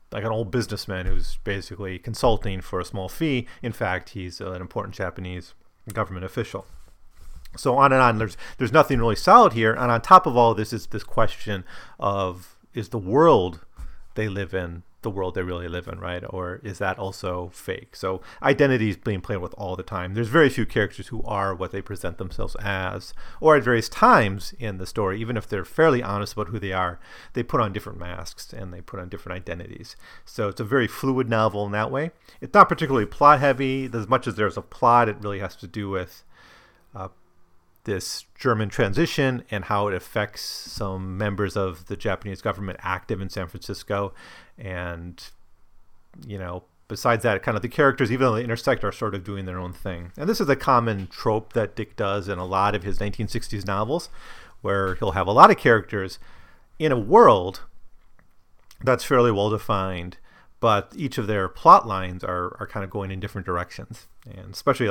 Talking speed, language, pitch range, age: 200 wpm, English, 90-115 Hz, 30-49